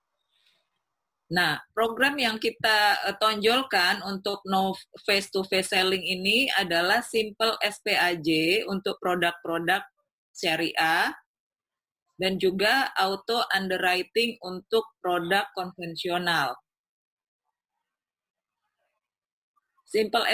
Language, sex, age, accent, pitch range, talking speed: Indonesian, female, 30-49, native, 185-230 Hz, 75 wpm